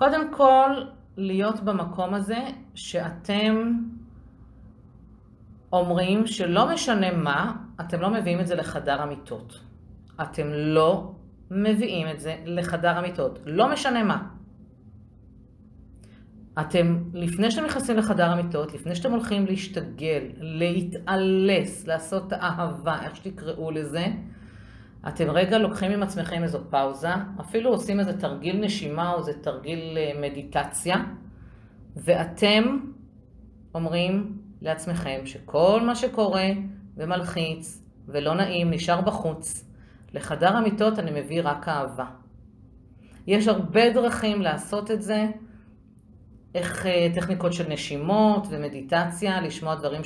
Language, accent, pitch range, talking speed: Hebrew, native, 155-205 Hz, 105 wpm